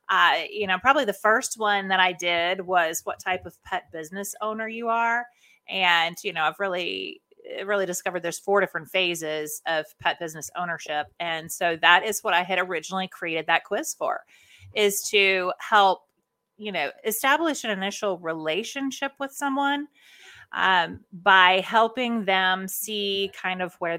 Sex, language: female, English